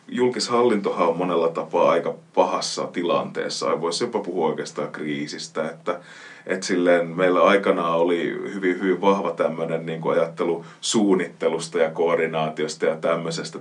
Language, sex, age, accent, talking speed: Finnish, male, 30-49, native, 130 wpm